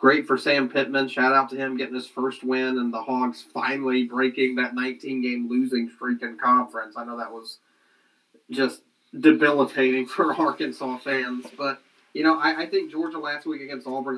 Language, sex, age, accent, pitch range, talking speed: English, male, 30-49, American, 120-135 Hz, 180 wpm